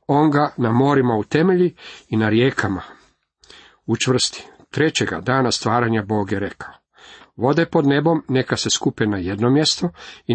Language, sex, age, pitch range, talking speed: Croatian, male, 50-69, 110-145 Hz, 150 wpm